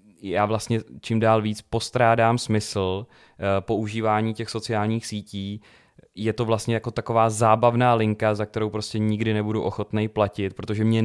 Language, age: Czech, 20-39